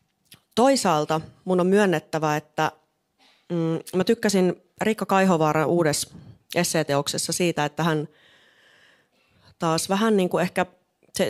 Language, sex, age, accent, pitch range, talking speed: Finnish, female, 30-49, native, 150-180 Hz, 110 wpm